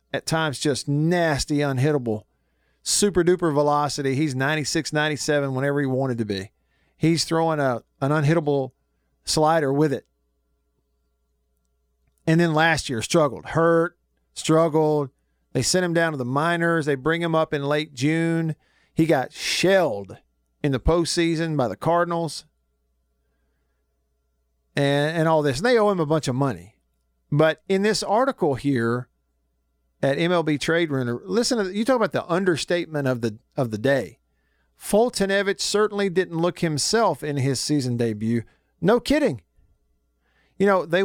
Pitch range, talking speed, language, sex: 115-165 Hz, 145 wpm, English, male